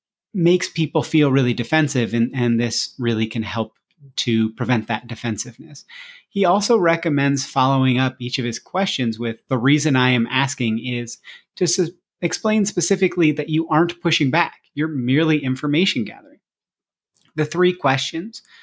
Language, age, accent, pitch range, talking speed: English, 30-49, American, 125-160 Hz, 150 wpm